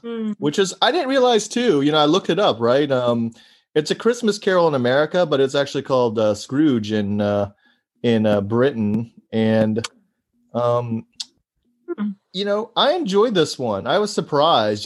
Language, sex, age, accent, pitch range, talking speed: English, male, 30-49, American, 115-165 Hz, 170 wpm